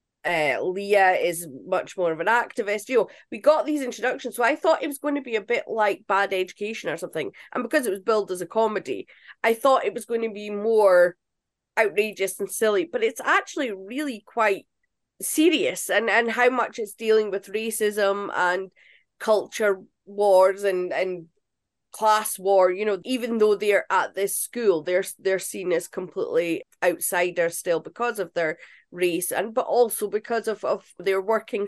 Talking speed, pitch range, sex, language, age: 180 wpm, 195-255 Hz, female, English, 20-39